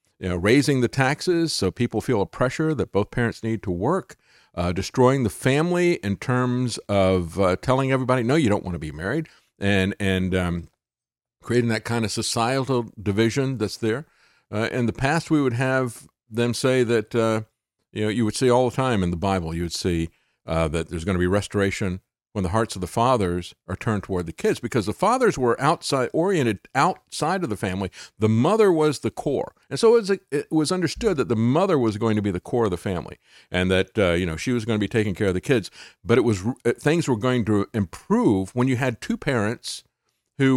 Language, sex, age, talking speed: English, male, 50-69, 220 wpm